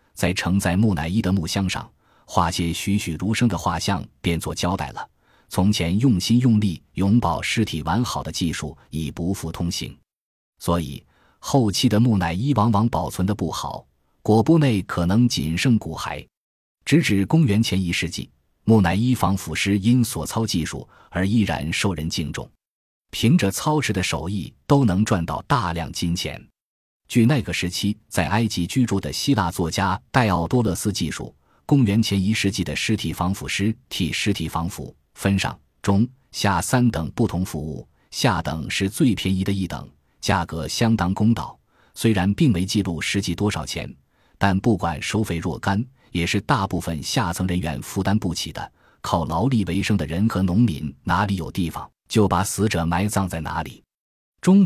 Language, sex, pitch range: Chinese, male, 85-110 Hz